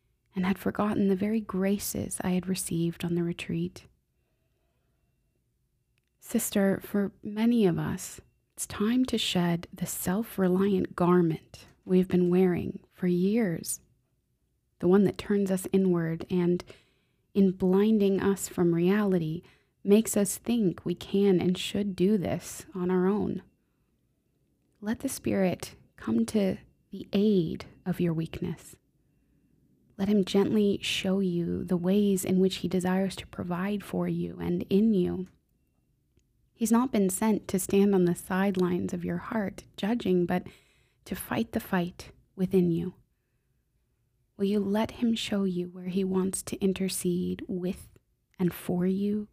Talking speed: 140 wpm